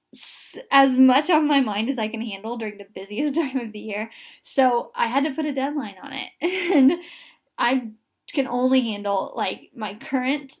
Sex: female